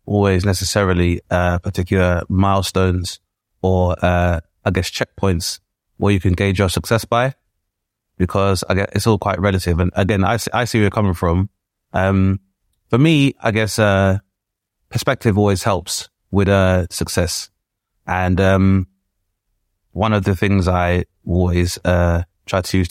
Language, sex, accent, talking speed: English, male, British, 150 wpm